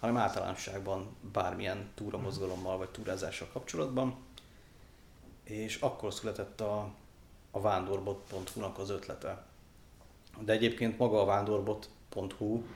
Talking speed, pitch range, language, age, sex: 95 wpm, 95-110 Hz, Hungarian, 30-49, male